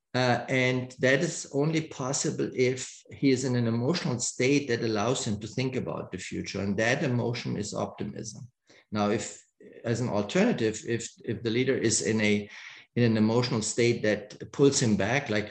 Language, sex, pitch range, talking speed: English, male, 100-120 Hz, 180 wpm